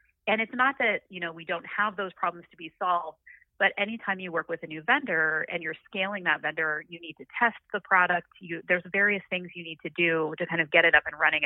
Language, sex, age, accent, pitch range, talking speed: English, female, 30-49, American, 165-205 Hz, 255 wpm